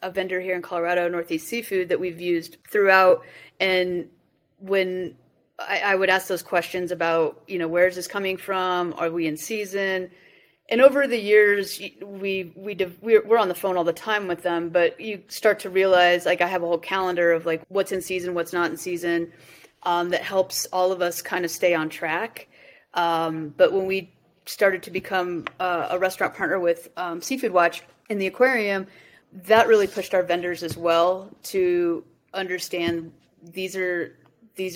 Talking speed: 185 wpm